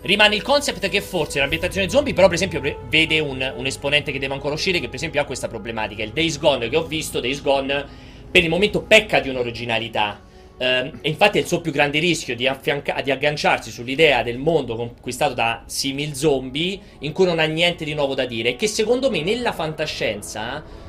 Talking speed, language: 210 wpm, Italian